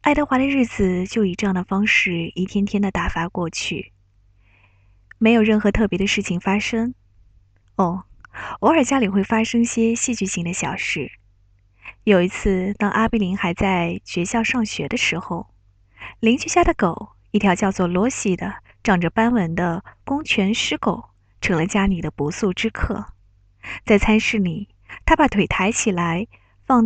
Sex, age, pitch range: female, 20-39, 165-225 Hz